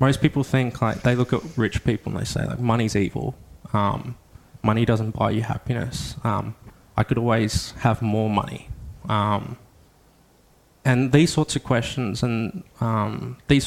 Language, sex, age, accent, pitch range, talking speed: English, male, 20-39, Australian, 110-135 Hz, 165 wpm